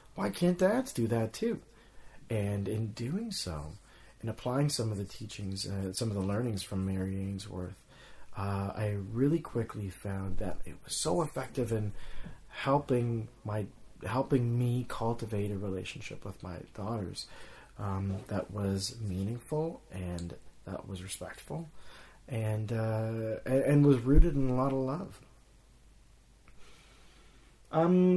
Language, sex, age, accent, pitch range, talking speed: English, male, 30-49, American, 110-135 Hz, 140 wpm